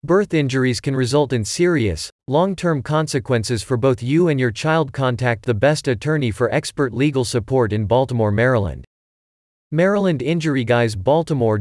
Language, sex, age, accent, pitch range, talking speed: English, male, 40-59, American, 115-150 Hz, 155 wpm